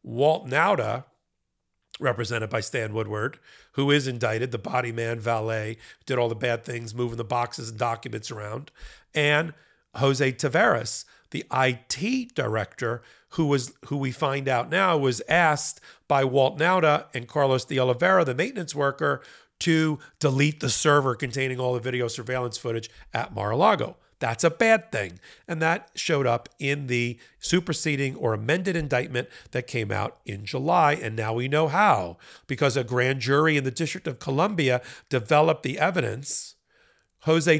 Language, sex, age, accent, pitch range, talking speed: English, male, 40-59, American, 120-155 Hz, 155 wpm